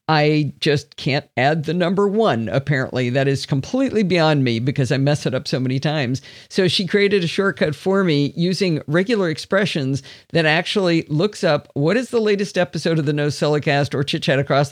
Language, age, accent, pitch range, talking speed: English, 50-69, American, 140-195 Hz, 195 wpm